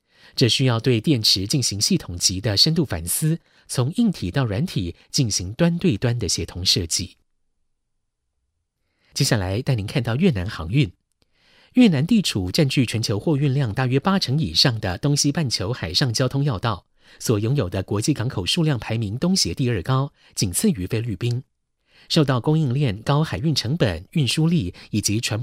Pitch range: 100-150 Hz